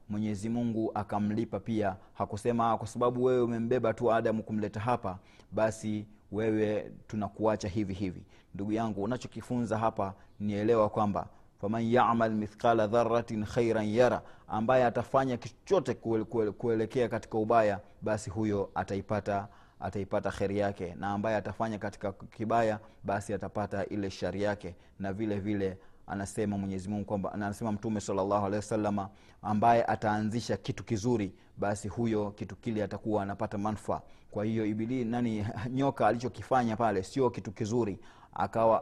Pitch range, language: 100-115 Hz, Swahili